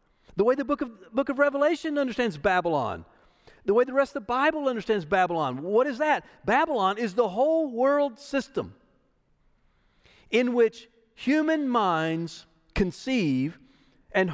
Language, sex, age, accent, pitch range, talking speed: English, male, 50-69, American, 160-265 Hz, 140 wpm